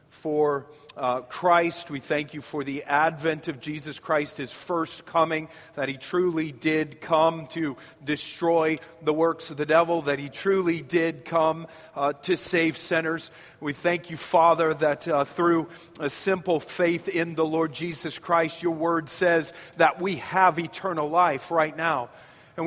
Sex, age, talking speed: male, 40-59, 165 wpm